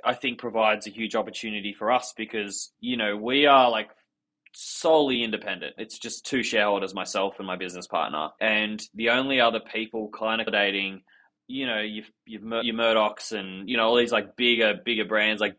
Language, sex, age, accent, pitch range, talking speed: English, male, 20-39, Australian, 100-115 Hz, 195 wpm